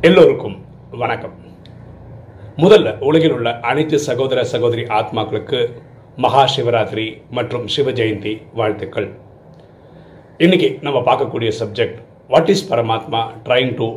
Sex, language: male, Tamil